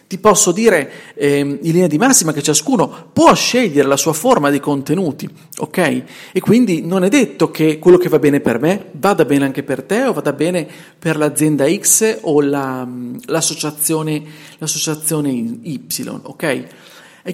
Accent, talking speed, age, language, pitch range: native, 155 wpm, 40-59, Italian, 145-185 Hz